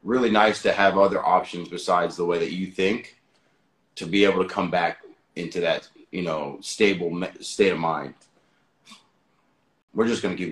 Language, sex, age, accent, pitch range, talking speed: English, male, 30-49, American, 90-110 Hz, 175 wpm